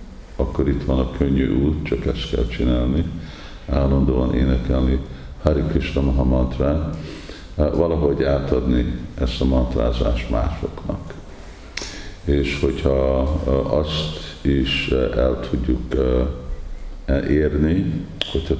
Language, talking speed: Hungarian, 95 wpm